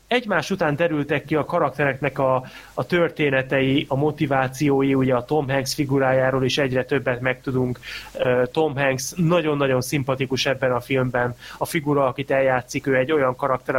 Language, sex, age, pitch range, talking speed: Hungarian, male, 20-39, 130-165 Hz, 150 wpm